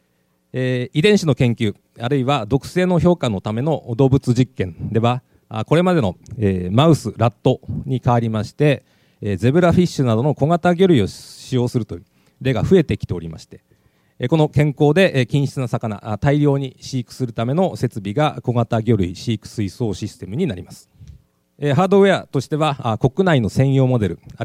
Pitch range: 110-150 Hz